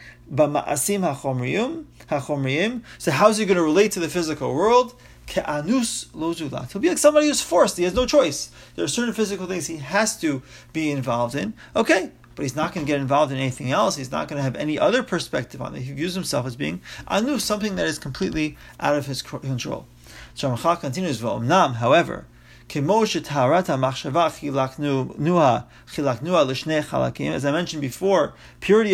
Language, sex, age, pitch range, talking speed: English, male, 30-49, 140-185 Hz, 155 wpm